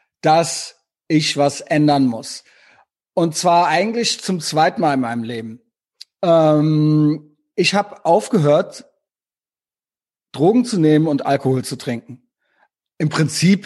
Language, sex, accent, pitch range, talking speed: German, male, German, 145-175 Hz, 120 wpm